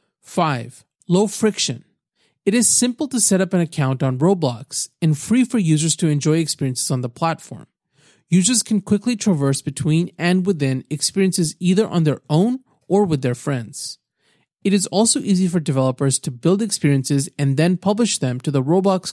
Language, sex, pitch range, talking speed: English, male, 140-190 Hz, 175 wpm